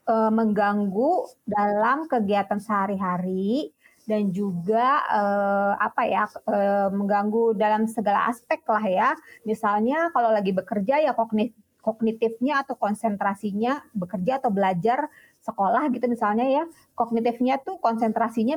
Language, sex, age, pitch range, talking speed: Indonesian, female, 30-49, 205-250 Hz, 115 wpm